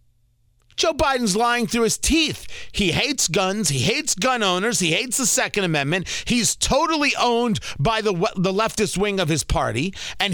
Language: English